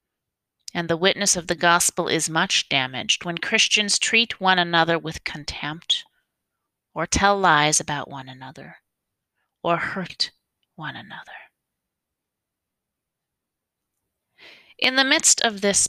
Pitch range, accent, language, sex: 175-220 Hz, American, English, female